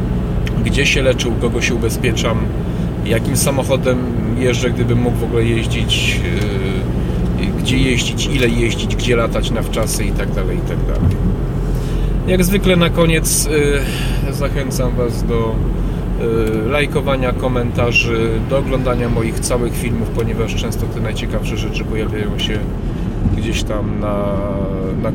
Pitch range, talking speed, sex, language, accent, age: 95-125 Hz, 115 wpm, male, Polish, native, 30-49